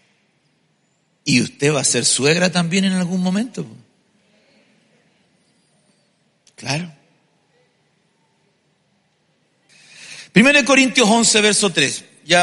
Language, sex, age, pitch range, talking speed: Spanish, male, 50-69, 170-260 Hz, 85 wpm